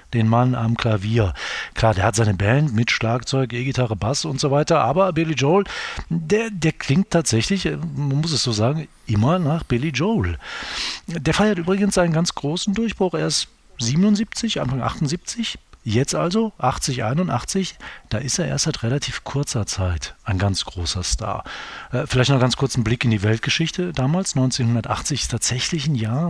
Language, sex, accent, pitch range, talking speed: German, male, German, 115-155 Hz, 175 wpm